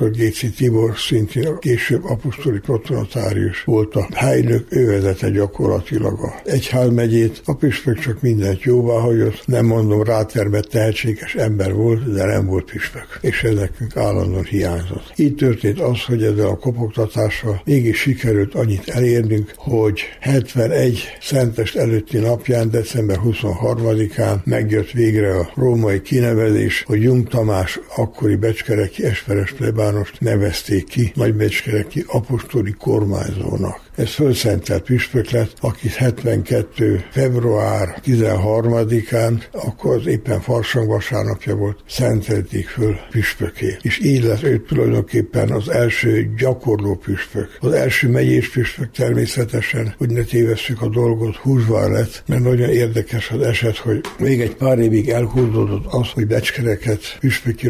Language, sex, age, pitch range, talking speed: Hungarian, male, 60-79, 105-120 Hz, 130 wpm